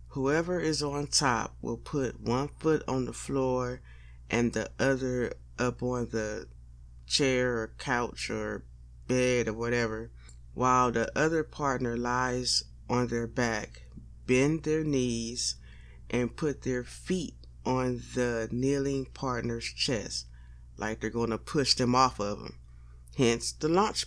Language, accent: English, American